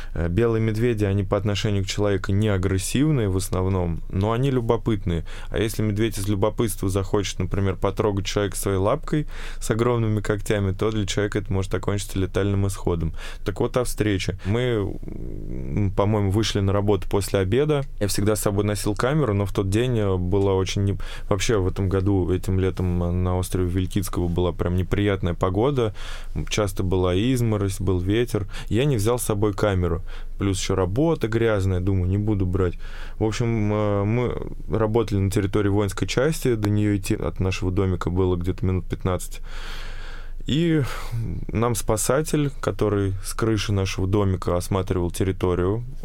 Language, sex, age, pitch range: Russian, male, 20-39, 95-110 Hz